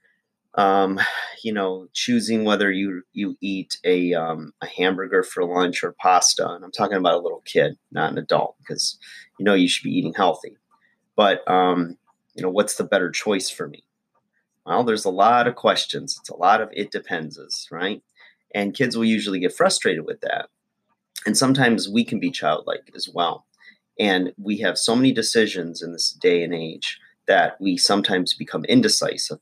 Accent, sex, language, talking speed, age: American, male, English, 180 wpm, 30-49